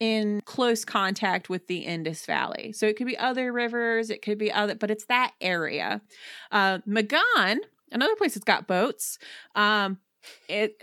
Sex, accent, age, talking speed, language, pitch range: female, American, 30-49, 165 wpm, English, 195-235 Hz